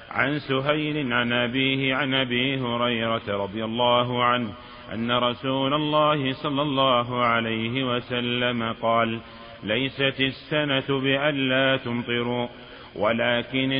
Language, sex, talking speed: Arabic, male, 100 wpm